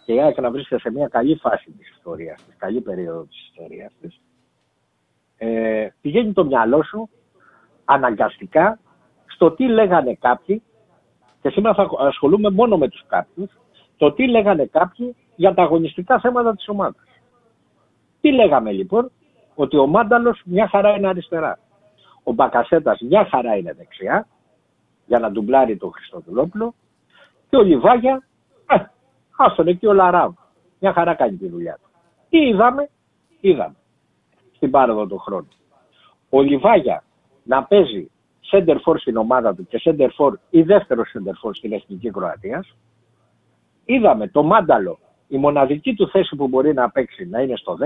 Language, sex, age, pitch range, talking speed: Greek, male, 60-79, 135-220 Hz, 145 wpm